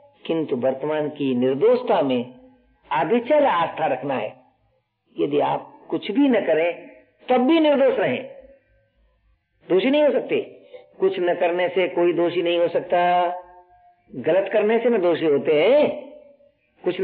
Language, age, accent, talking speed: Hindi, 50-69, native, 135 wpm